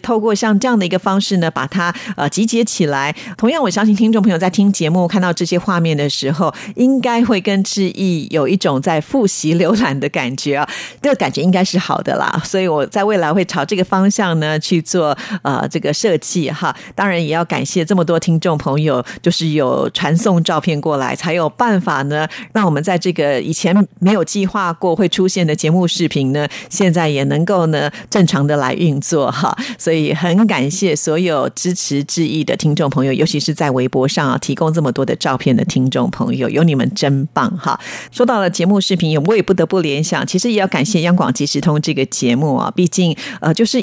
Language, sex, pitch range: Chinese, female, 150-195 Hz